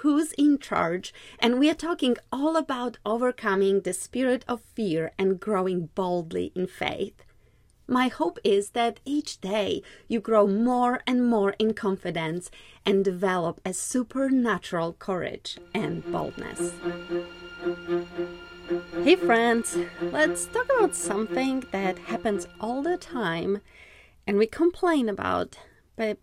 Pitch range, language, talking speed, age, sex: 180-245 Hz, English, 125 wpm, 30-49, female